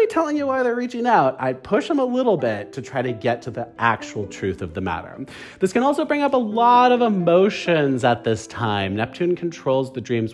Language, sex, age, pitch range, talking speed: English, male, 40-59, 105-170 Hz, 225 wpm